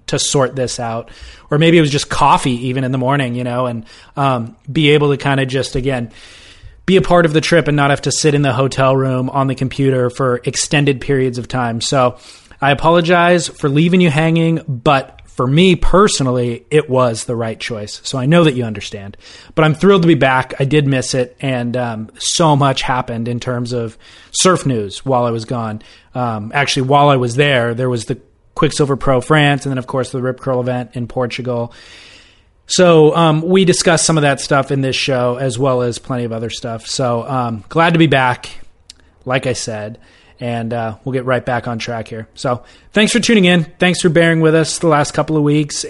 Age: 20-39